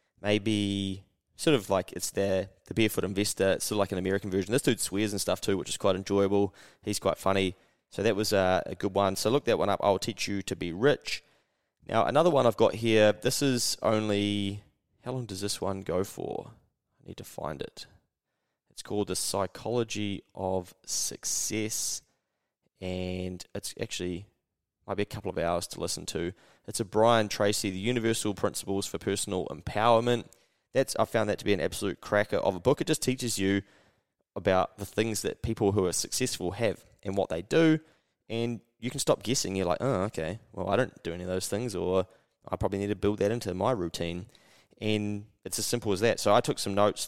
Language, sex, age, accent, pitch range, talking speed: English, male, 20-39, Australian, 95-110 Hz, 205 wpm